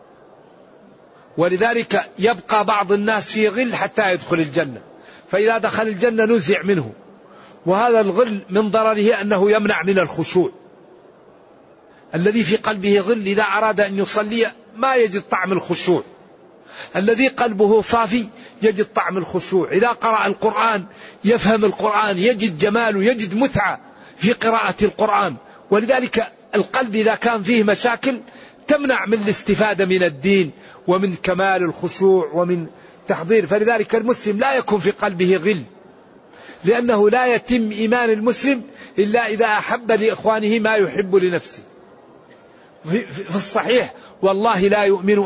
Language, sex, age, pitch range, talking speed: Arabic, male, 50-69, 190-230 Hz, 120 wpm